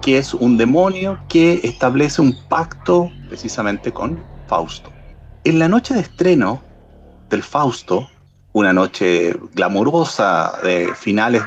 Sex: male